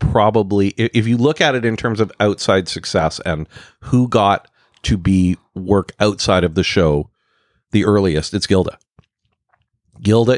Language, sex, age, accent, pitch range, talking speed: English, male, 40-59, American, 90-115 Hz, 150 wpm